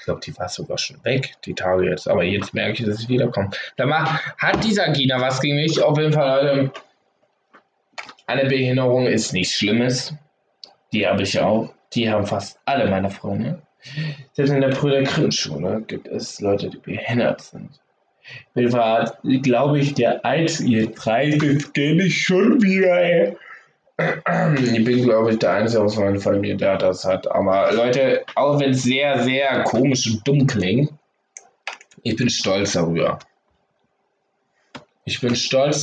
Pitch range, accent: 110-145 Hz, German